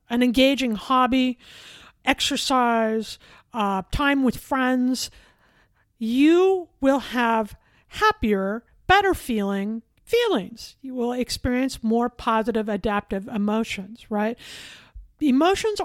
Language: English